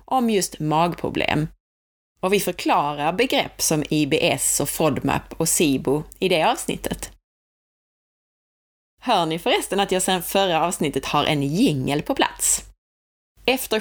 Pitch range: 145-200 Hz